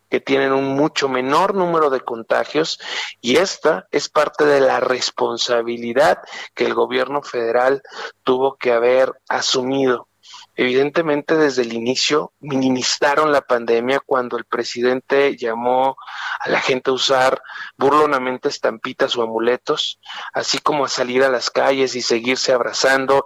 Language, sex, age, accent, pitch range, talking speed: Spanish, male, 40-59, Mexican, 130-170 Hz, 135 wpm